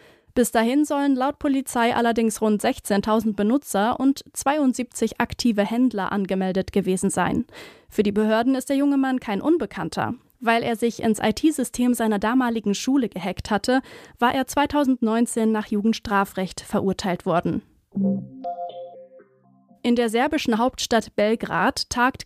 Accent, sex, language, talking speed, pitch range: German, female, German, 130 wpm, 205-260 Hz